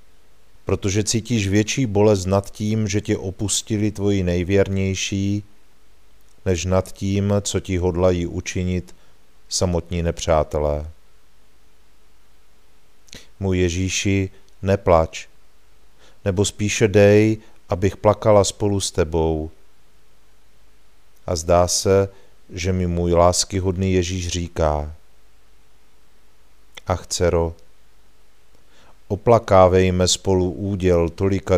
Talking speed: 85 wpm